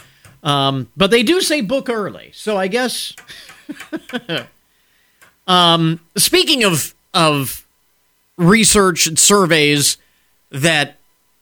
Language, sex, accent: English, male, American